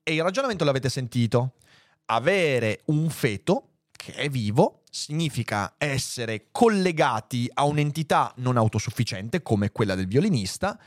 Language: Italian